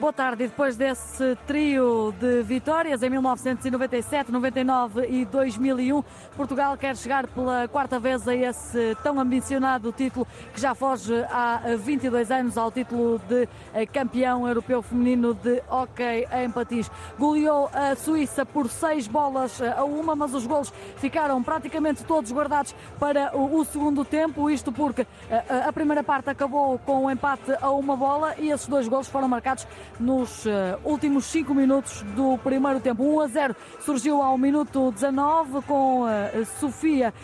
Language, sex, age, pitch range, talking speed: Portuguese, female, 20-39, 250-290 Hz, 150 wpm